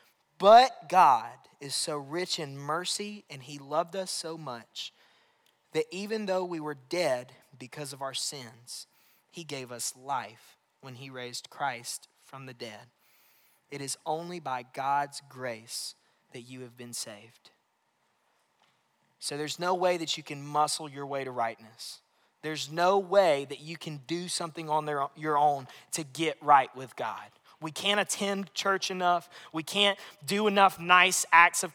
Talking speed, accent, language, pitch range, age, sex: 160 wpm, American, English, 140-180 Hz, 20-39, male